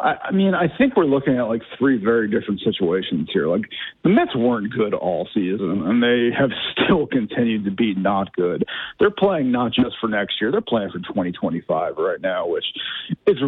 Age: 40-59